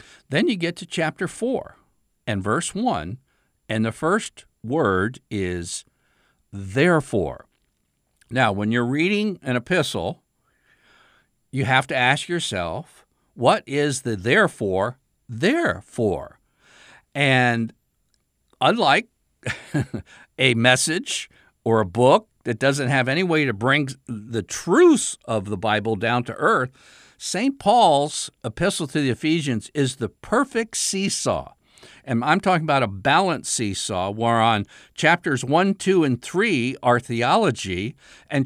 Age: 60-79